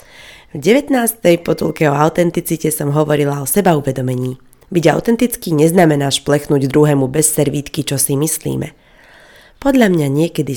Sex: female